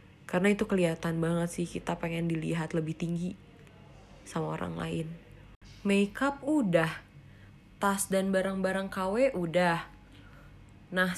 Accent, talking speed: native, 115 wpm